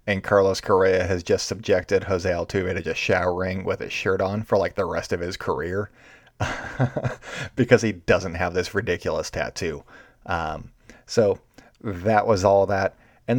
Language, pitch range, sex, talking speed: English, 95-120 Hz, male, 160 wpm